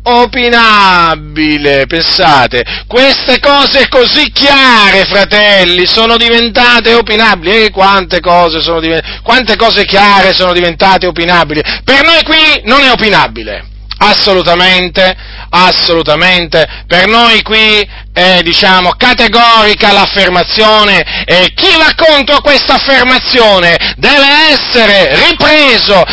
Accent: native